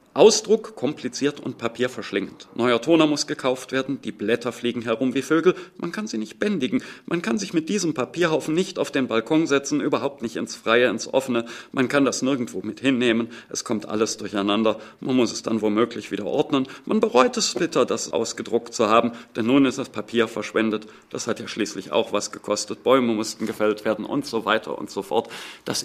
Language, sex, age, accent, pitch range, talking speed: German, male, 40-59, German, 110-145 Hz, 200 wpm